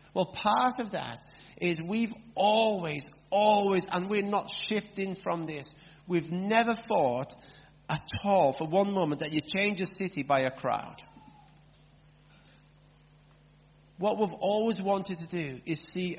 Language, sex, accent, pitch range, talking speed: English, male, British, 150-195 Hz, 140 wpm